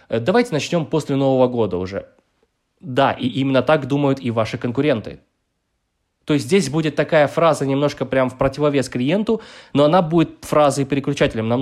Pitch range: 120-150 Hz